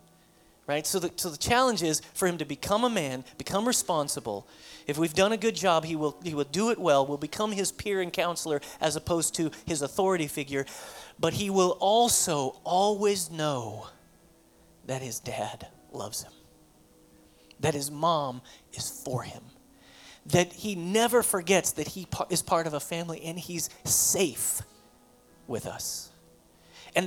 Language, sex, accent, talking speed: English, male, American, 165 wpm